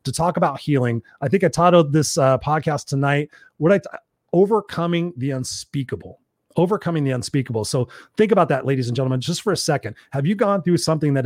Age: 30-49